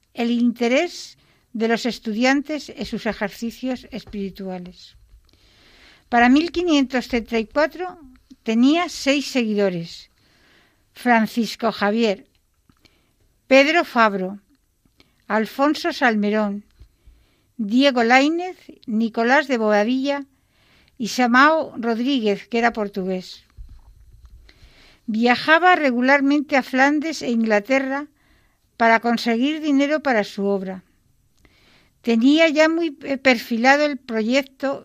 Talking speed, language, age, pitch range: 85 wpm, Spanish, 60-79, 210-275 Hz